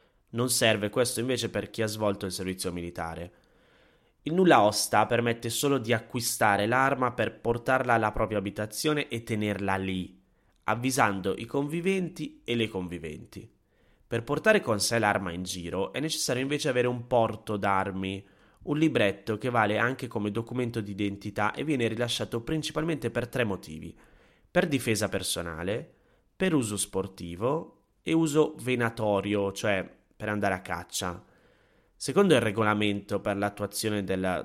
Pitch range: 95-125 Hz